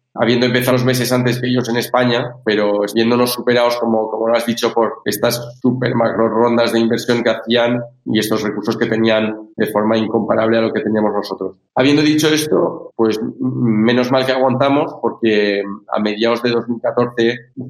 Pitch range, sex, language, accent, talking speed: 110-125 Hz, male, Spanish, Spanish, 175 wpm